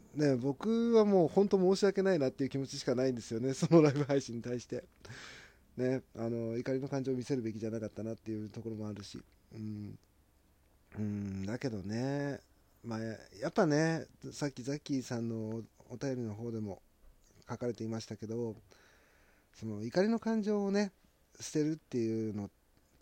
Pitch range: 105-145 Hz